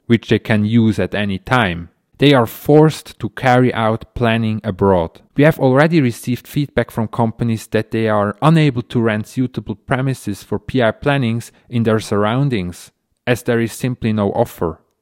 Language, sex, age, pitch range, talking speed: English, male, 30-49, 105-125 Hz, 170 wpm